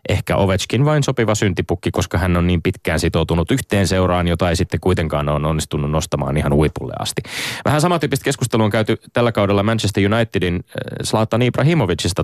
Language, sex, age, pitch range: Finnish, male, 20-39, 85-110 Hz